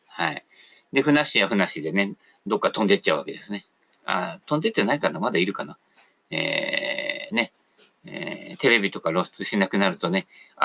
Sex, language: male, Japanese